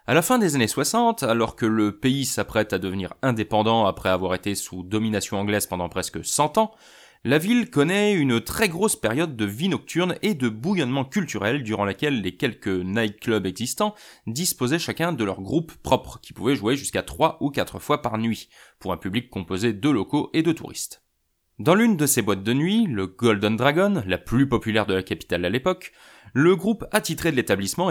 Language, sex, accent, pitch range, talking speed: French, male, French, 100-155 Hz, 200 wpm